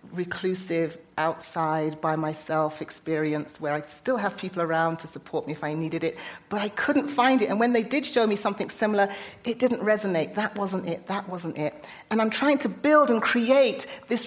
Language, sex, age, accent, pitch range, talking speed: English, female, 40-59, British, 165-225 Hz, 200 wpm